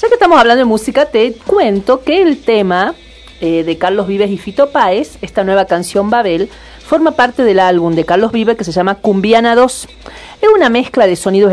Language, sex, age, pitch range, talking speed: Spanish, female, 40-59, 180-240 Hz, 205 wpm